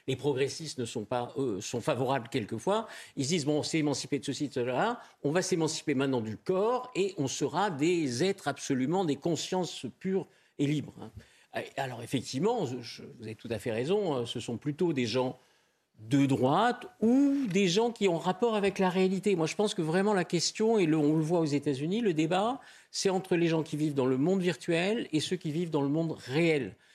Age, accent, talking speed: 50-69, French, 210 wpm